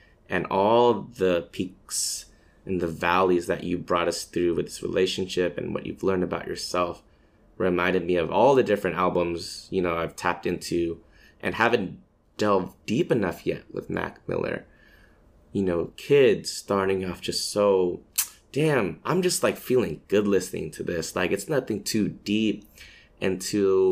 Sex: male